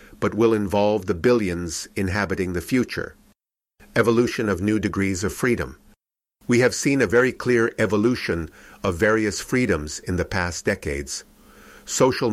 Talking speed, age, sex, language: 140 wpm, 50-69, male, English